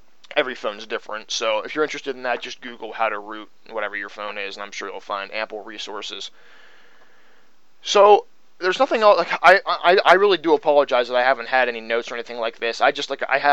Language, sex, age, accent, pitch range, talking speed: English, male, 20-39, American, 115-140 Hz, 220 wpm